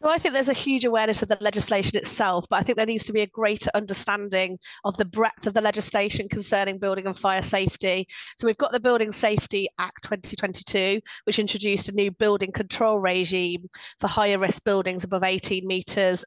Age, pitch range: 30-49, 195-230 Hz